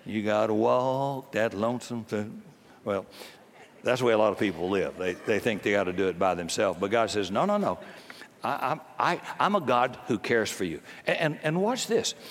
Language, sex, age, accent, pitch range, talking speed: English, male, 60-79, American, 155-210 Hz, 225 wpm